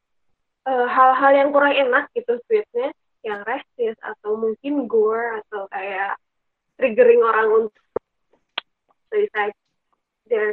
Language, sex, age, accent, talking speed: Indonesian, female, 20-39, native, 105 wpm